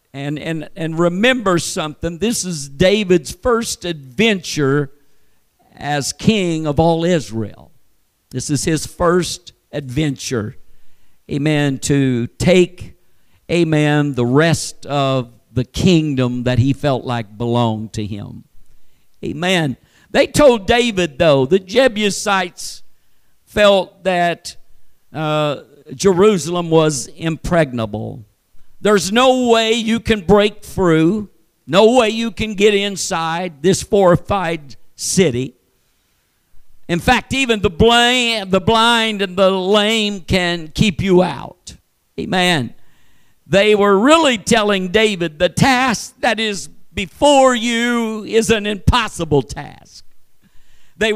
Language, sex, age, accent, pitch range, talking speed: English, male, 50-69, American, 140-215 Hz, 110 wpm